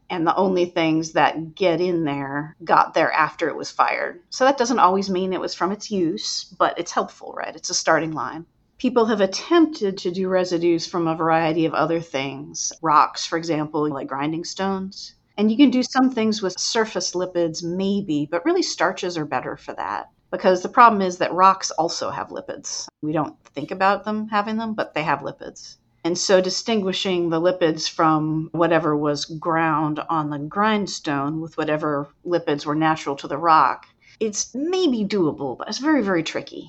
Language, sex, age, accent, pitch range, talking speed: English, female, 40-59, American, 155-195 Hz, 190 wpm